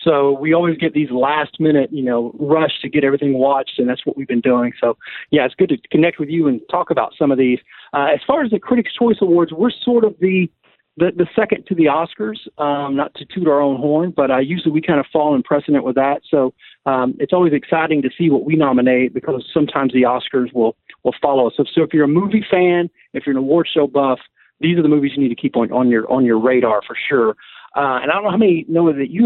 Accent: American